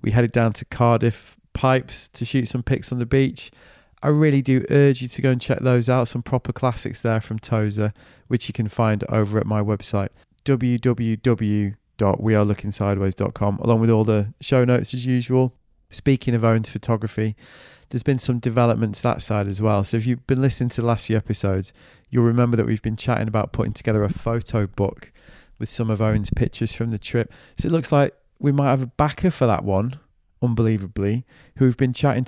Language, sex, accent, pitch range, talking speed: English, male, British, 110-125 Hz, 195 wpm